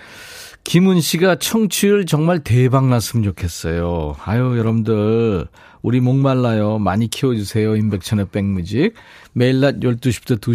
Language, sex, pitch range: Korean, male, 105-155 Hz